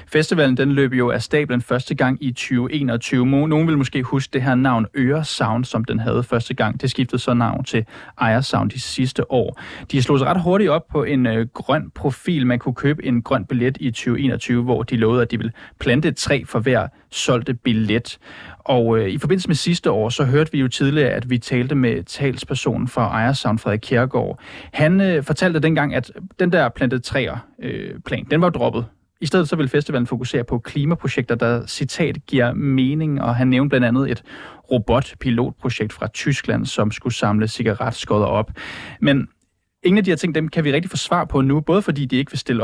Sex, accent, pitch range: male, native, 120-150 Hz